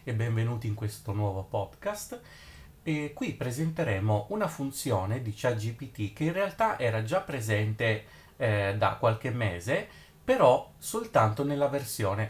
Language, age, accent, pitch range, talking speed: Italian, 30-49, native, 110-140 Hz, 130 wpm